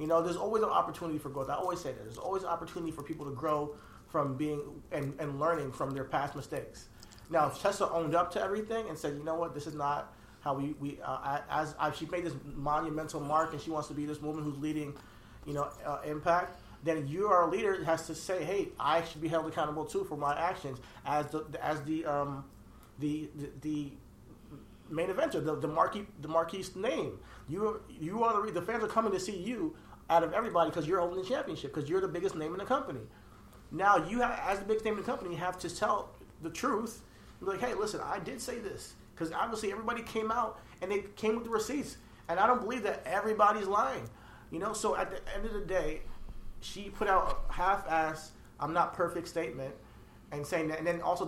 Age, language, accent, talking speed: 30-49, English, American, 230 wpm